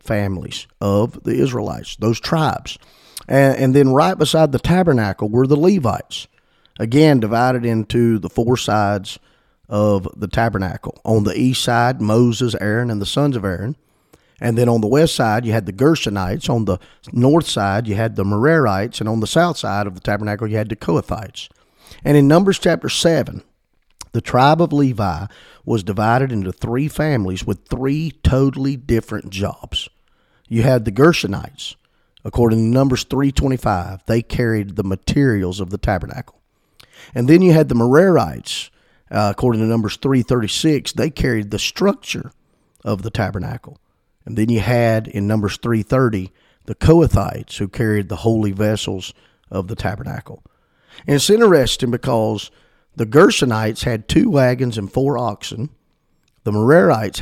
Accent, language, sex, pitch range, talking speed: American, English, male, 105-135 Hz, 155 wpm